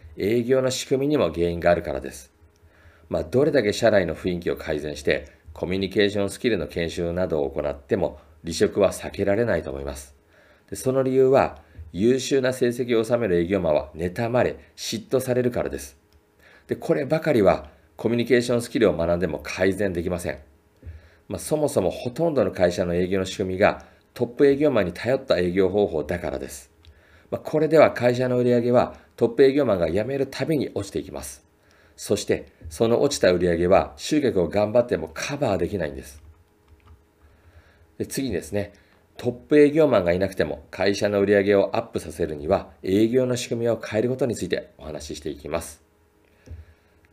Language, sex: Japanese, male